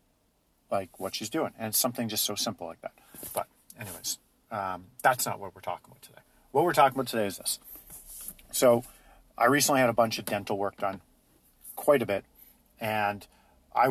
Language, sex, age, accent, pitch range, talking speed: English, male, 50-69, American, 95-130 Hz, 190 wpm